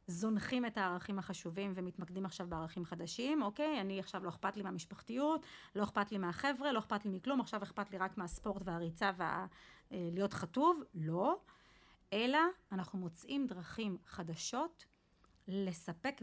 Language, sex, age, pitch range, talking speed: Hebrew, female, 30-49, 180-220 Hz, 140 wpm